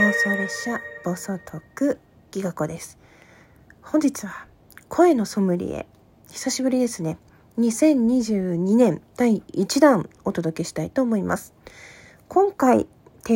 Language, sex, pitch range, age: Japanese, female, 195-280 Hz, 40-59